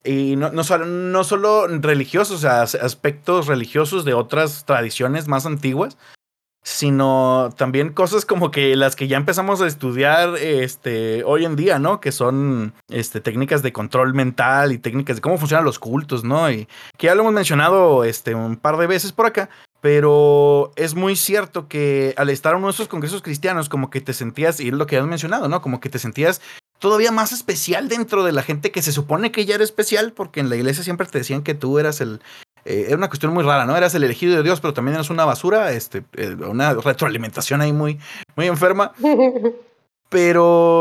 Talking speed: 205 wpm